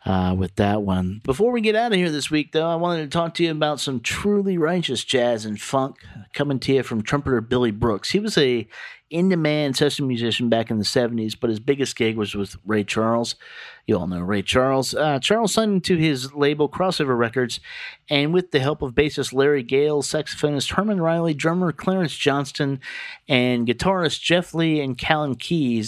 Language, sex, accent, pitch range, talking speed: English, male, American, 115-155 Hz, 195 wpm